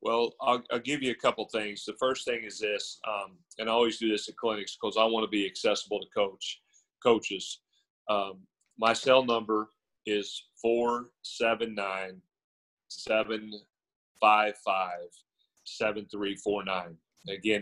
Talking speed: 125 wpm